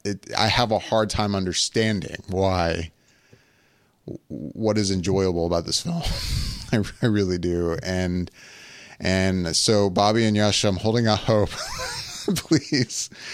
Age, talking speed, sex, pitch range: 30-49, 125 wpm, male, 85-110 Hz